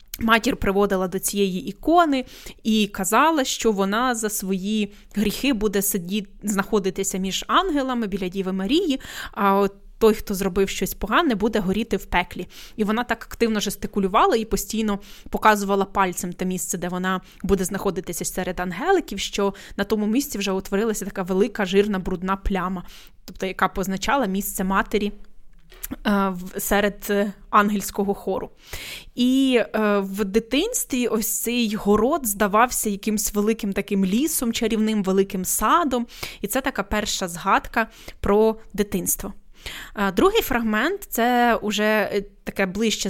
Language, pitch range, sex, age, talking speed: Ukrainian, 195-225 Hz, female, 20-39, 130 wpm